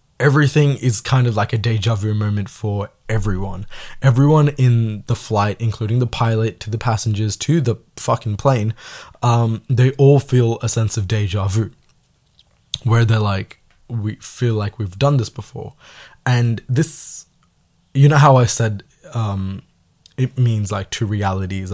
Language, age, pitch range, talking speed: Tamil, 20-39, 100-125 Hz, 155 wpm